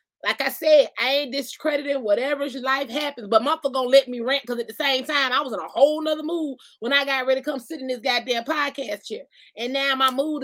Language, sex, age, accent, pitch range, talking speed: English, female, 20-39, American, 225-290 Hz, 245 wpm